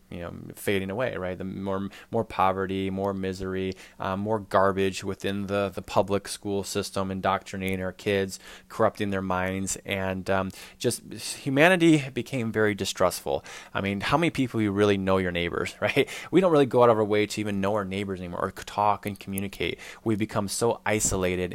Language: English